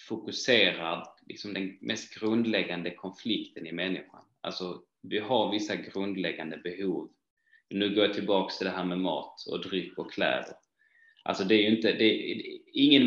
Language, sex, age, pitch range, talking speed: Swedish, male, 20-39, 95-125 Hz, 160 wpm